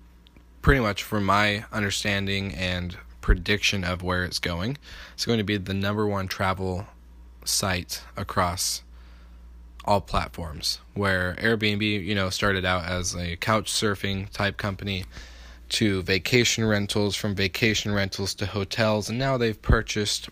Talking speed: 140 wpm